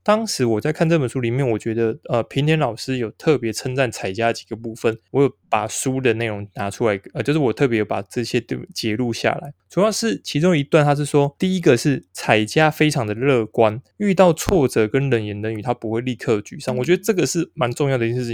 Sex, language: male, Chinese